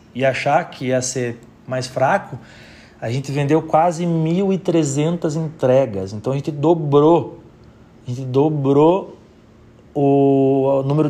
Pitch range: 125-155 Hz